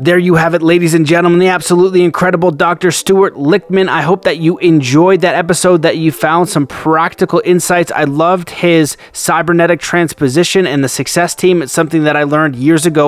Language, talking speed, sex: English, 195 wpm, male